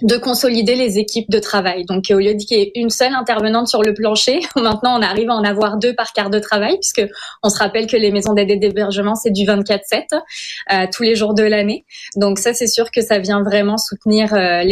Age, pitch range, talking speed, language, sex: 20-39, 200-225 Hz, 230 wpm, French, female